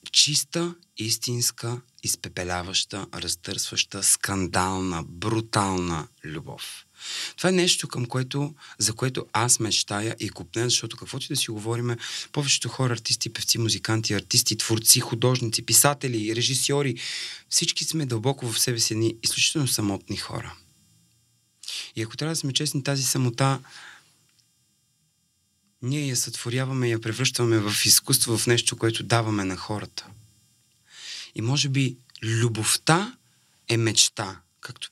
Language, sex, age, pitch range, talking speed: Bulgarian, male, 30-49, 105-130 Hz, 125 wpm